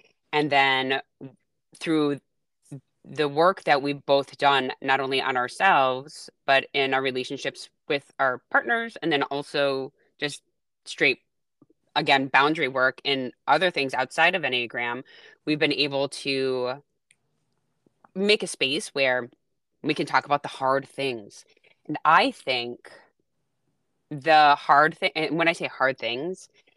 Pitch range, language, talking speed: 135-165 Hz, English, 135 wpm